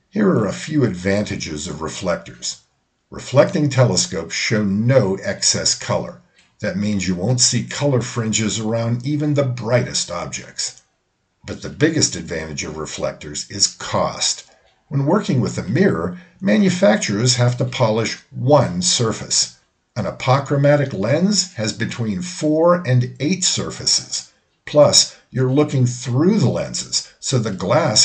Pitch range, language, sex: 100-145 Hz, English, male